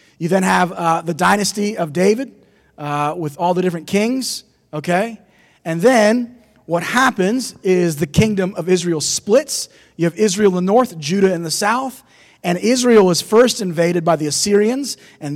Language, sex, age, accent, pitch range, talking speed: English, male, 30-49, American, 150-195 Hz, 170 wpm